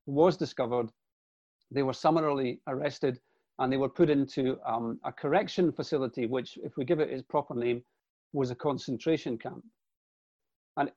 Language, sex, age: English, male, 40-59